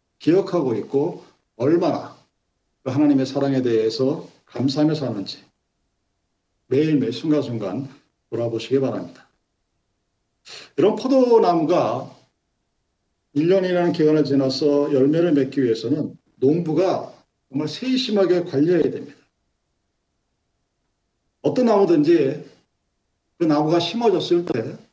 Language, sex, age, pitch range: Korean, male, 50-69, 135-200 Hz